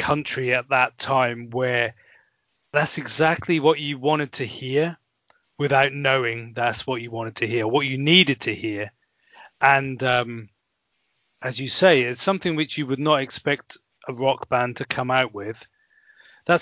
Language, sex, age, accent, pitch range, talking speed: English, male, 30-49, British, 120-145 Hz, 165 wpm